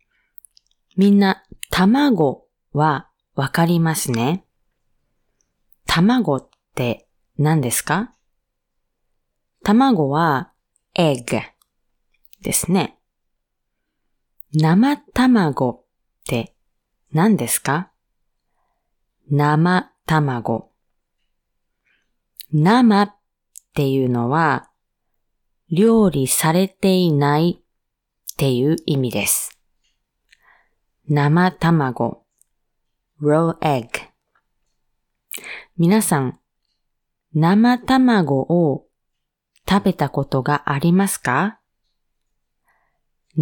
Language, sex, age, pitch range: Japanese, female, 30-49, 145-195 Hz